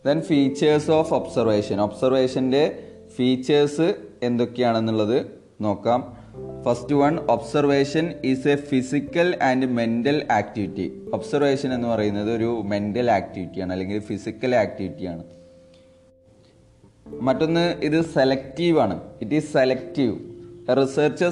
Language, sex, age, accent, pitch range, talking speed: Malayalam, male, 30-49, native, 110-145 Hz, 100 wpm